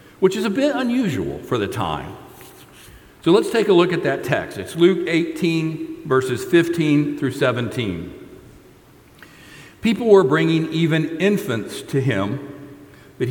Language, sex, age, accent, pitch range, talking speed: English, male, 60-79, American, 125-170 Hz, 140 wpm